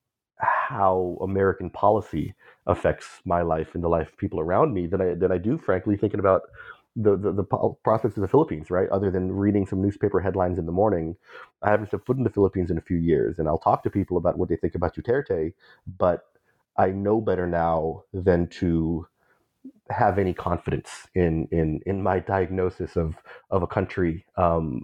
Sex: male